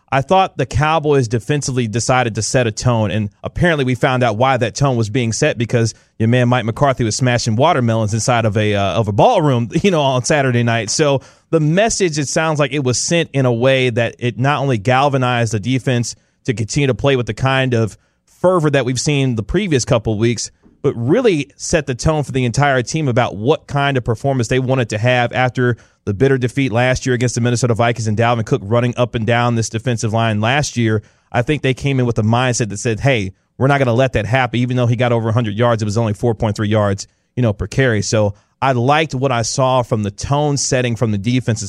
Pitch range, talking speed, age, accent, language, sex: 110-135 Hz, 235 wpm, 30-49, American, English, male